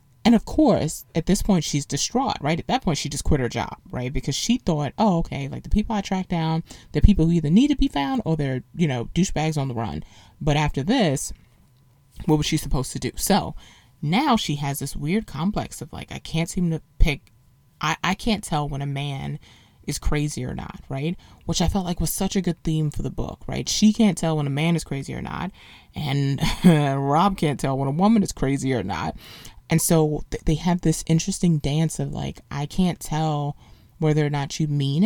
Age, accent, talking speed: 20-39, American, 225 wpm